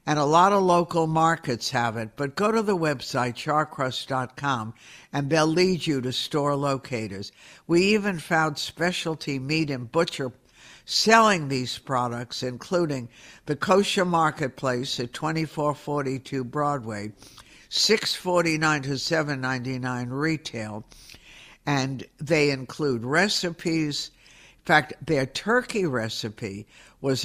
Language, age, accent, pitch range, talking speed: English, 60-79, American, 125-165 Hz, 115 wpm